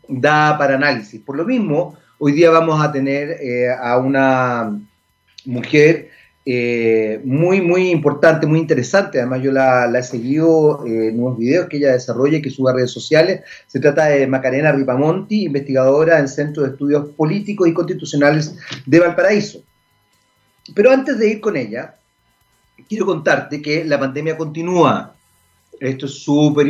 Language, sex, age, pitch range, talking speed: Spanish, male, 40-59, 125-160 Hz, 155 wpm